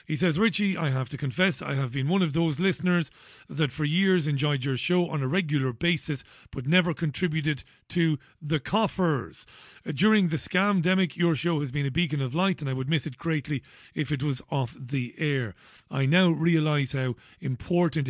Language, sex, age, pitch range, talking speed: English, male, 40-59, 135-170 Hz, 190 wpm